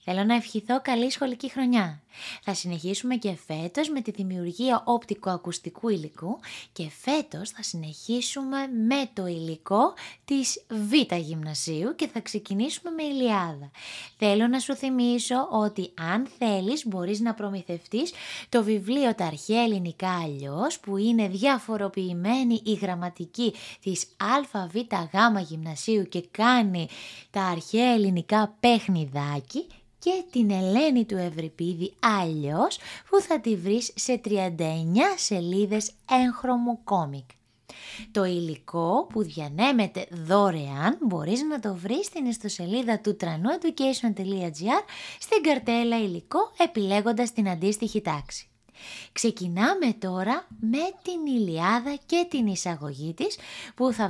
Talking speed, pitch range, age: 120 wpm, 180-250 Hz, 20-39